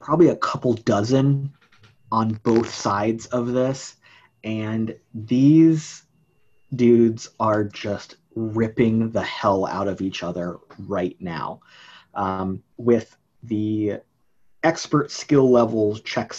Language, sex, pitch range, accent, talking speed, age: English, male, 105-125 Hz, American, 110 wpm, 30-49